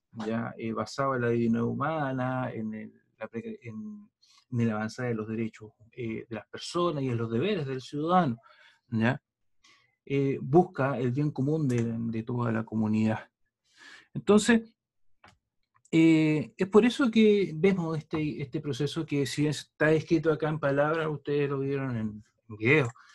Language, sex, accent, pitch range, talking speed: Spanish, male, Argentinian, 115-145 Hz, 155 wpm